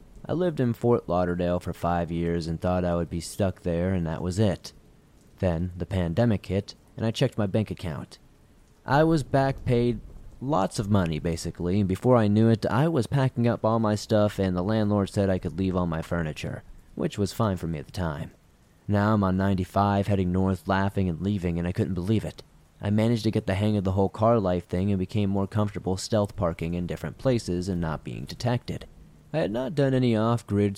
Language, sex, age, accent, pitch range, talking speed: English, male, 30-49, American, 90-110 Hz, 220 wpm